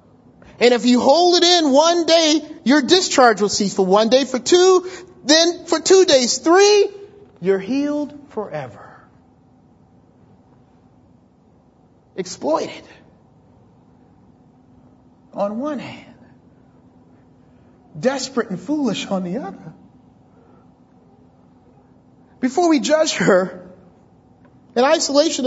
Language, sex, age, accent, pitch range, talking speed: English, male, 40-59, American, 250-335 Hz, 95 wpm